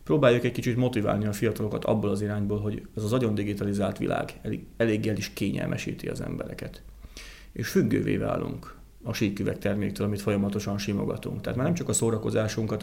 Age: 30-49